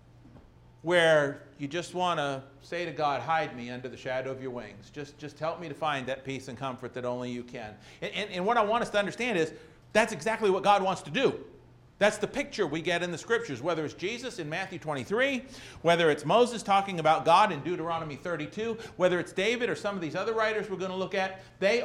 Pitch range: 140-180 Hz